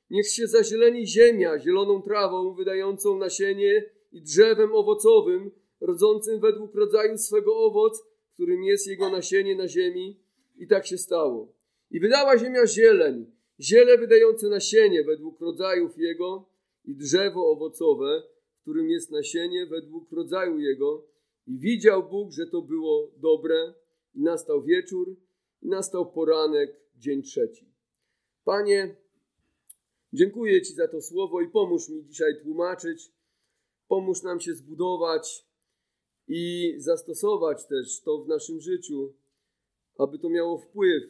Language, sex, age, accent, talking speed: Polish, male, 40-59, native, 125 wpm